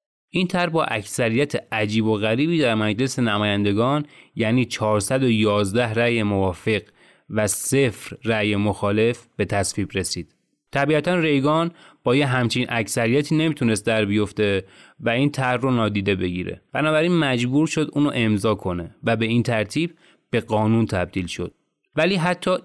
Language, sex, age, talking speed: Persian, male, 30-49, 140 wpm